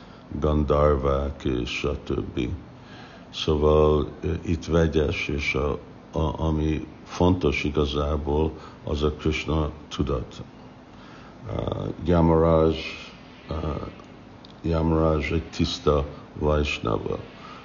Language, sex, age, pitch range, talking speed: Hungarian, male, 60-79, 75-80 Hz, 80 wpm